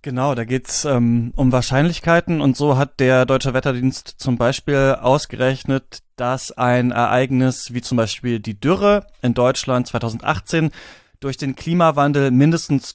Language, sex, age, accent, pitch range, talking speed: German, male, 30-49, German, 125-150 Hz, 145 wpm